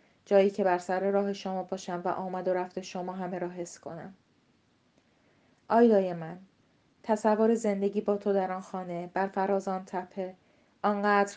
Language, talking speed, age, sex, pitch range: Persian, 160 wpm, 30-49, female, 180-200 Hz